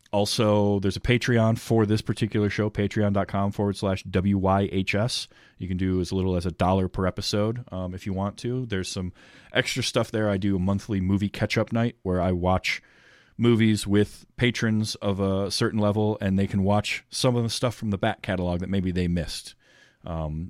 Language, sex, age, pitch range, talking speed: English, male, 30-49, 90-110 Hz, 195 wpm